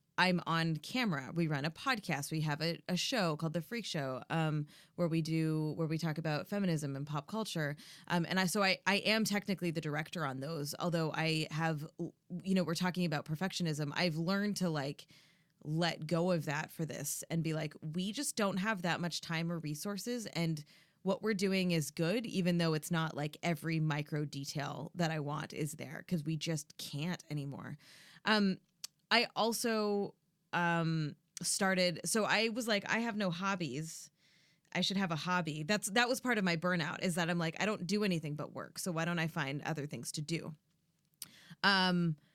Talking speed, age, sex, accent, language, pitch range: 200 wpm, 20-39, female, American, English, 160-200 Hz